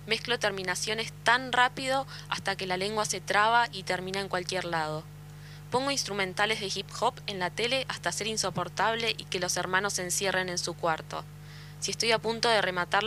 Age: 20-39